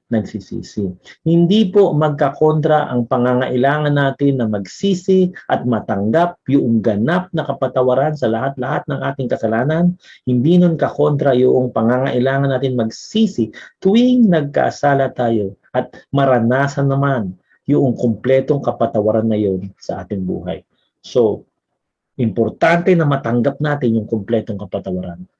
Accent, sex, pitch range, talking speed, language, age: Filipino, male, 115-145 Hz, 115 wpm, English, 50-69